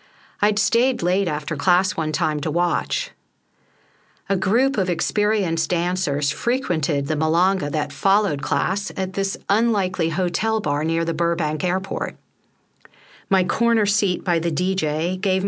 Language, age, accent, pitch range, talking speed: English, 50-69, American, 155-205 Hz, 140 wpm